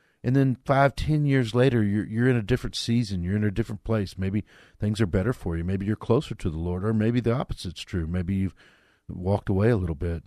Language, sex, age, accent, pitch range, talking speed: English, male, 50-69, American, 90-115 Hz, 240 wpm